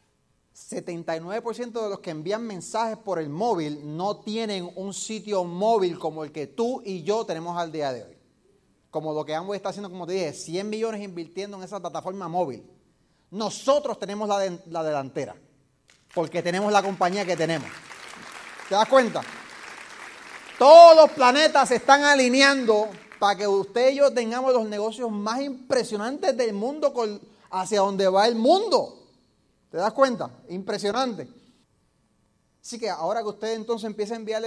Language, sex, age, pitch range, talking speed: Spanish, male, 30-49, 160-225 Hz, 155 wpm